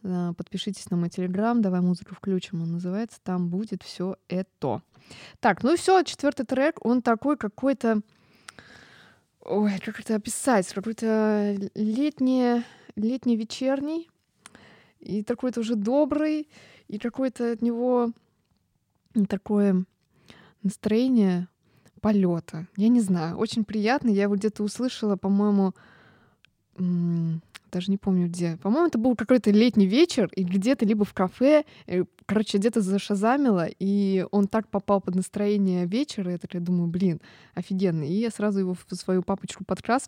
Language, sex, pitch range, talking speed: Russian, female, 185-230 Hz, 135 wpm